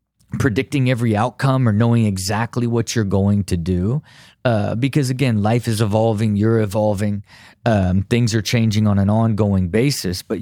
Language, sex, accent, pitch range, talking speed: English, male, American, 95-120 Hz, 160 wpm